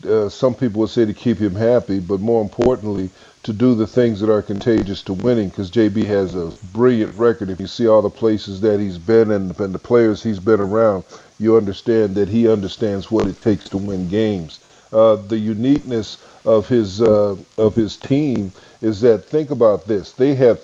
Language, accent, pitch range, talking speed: English, American, 105-130 Hz, 200 wpm